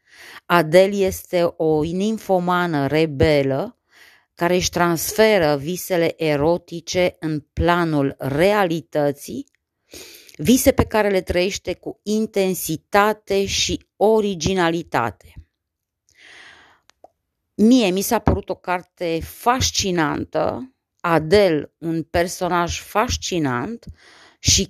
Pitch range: 155-195 Hz